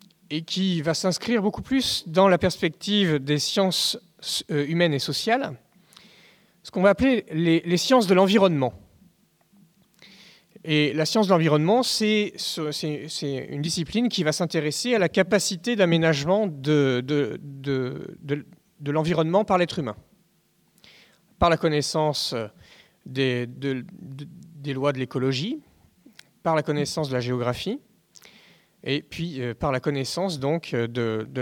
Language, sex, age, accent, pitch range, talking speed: French, male, 40-59, French, 145-195 Hz, 130 wpm